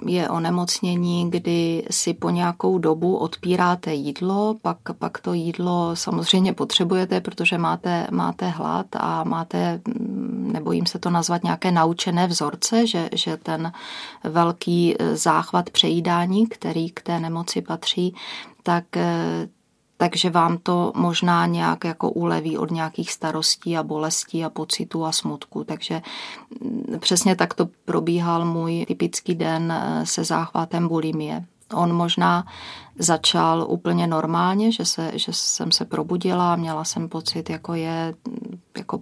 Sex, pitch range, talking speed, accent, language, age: female, 160-185 Hz, 130 wpm, native, Czech, 30-49